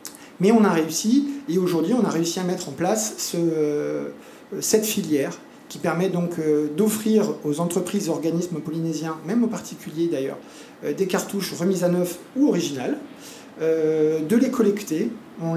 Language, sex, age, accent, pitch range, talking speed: French, male, 40-59, French, 150-195 Hz, 145 wpm